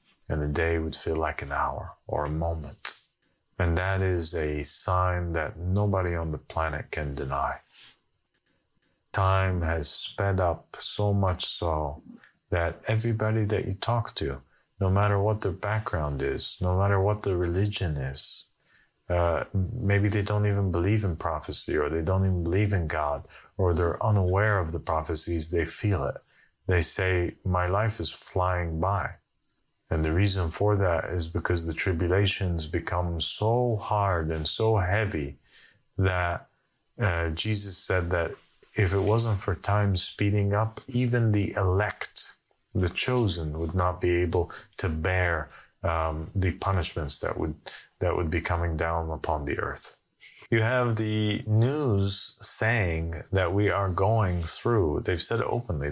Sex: male